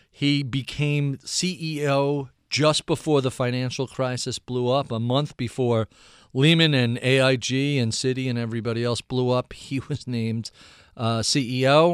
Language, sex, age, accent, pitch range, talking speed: English, male, 40-59, American, 115-150 Hz, 140 wpm